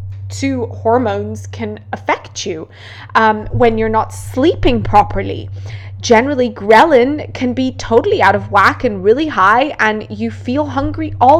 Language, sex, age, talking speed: English, female, 20-39, 140 wpm